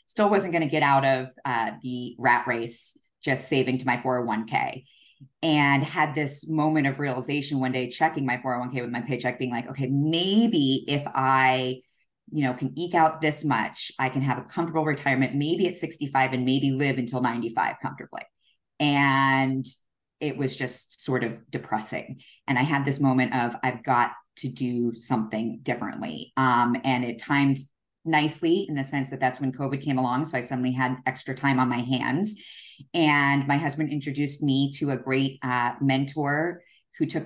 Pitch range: 130-145 Hz